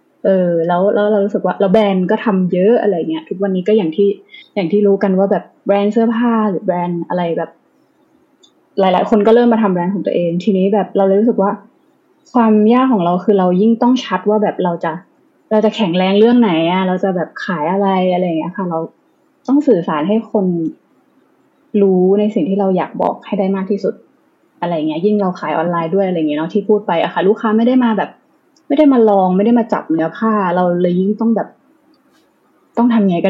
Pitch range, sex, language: 180-235 Hz, female, Thai